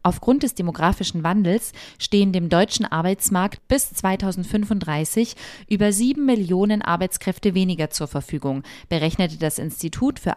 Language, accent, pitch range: German, German, 165-220 Hz